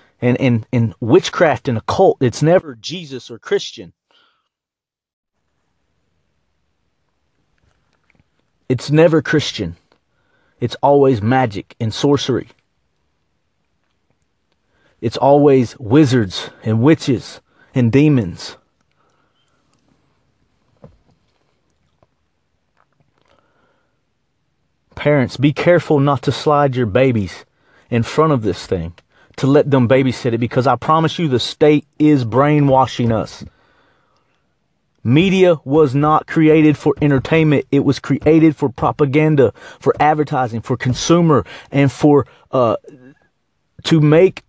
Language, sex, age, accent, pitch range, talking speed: English, male, 30-49, American, 115-150 Hz, 100 wpm